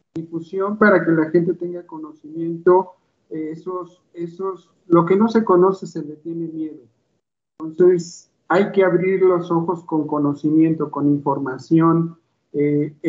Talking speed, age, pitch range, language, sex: 140 wpm, 50-69, 155-175 Hz, Spanish, male